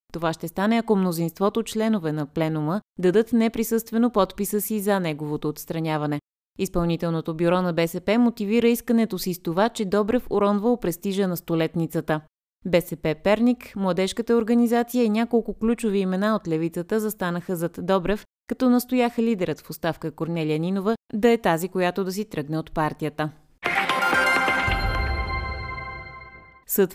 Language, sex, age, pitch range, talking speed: Bulgarian, female, 20-39, 165-215 Hz, 135 wpm